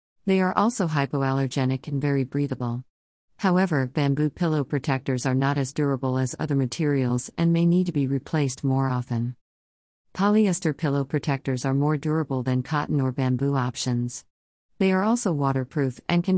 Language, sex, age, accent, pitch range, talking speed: English, female, 50-69, American, 130-160 Hz, 160 wpm